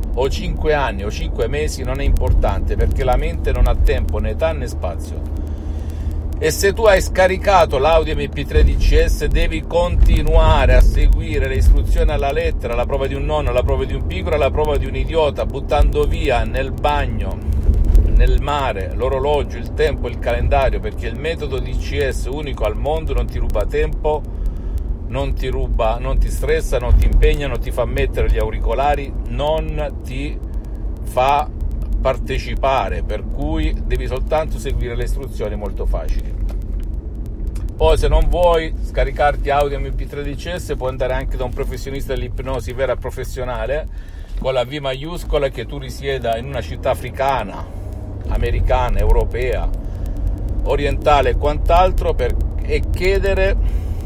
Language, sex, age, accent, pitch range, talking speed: Italian, male, 50-69, native, 75-125 Hz, 155 wpm